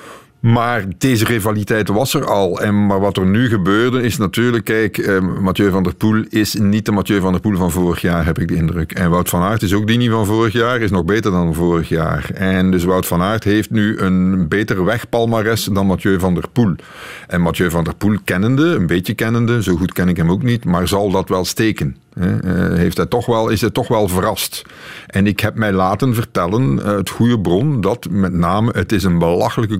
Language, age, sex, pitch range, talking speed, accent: Dutch, 50-69, male, 95-115 Hz, 215 wpm, Dutch